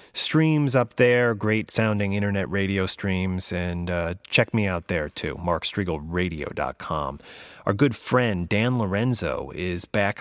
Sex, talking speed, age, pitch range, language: male, 130 wpm, 30-49, 85-105 Hz, English